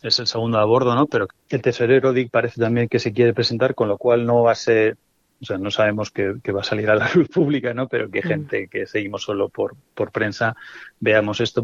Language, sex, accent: Spanish, male, Spanish